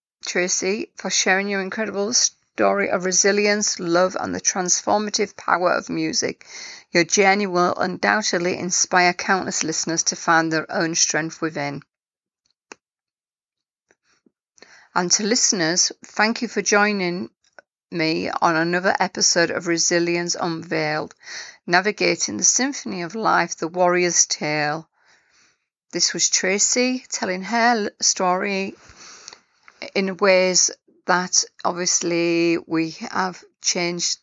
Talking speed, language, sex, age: 110 wpm, English, female, 40-59